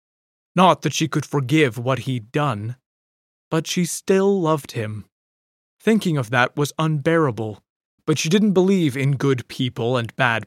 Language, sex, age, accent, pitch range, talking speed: English, male, 30-49, American, 115-160 Hz, 155 wpm